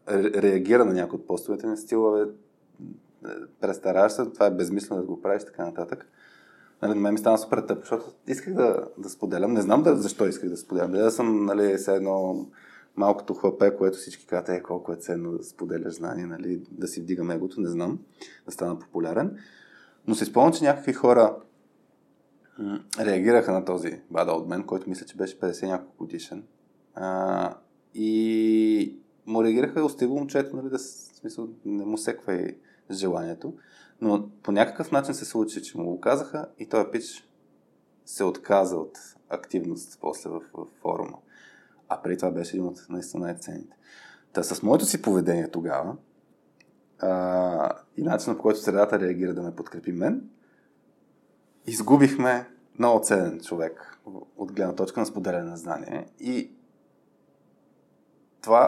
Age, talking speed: 20-39, 160 wpm